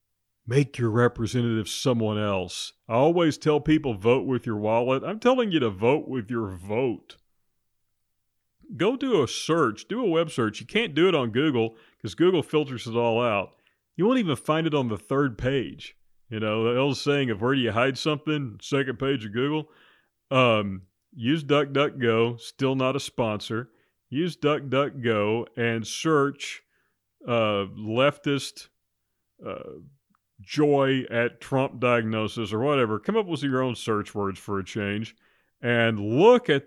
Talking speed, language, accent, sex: 160 wpm, English, American, male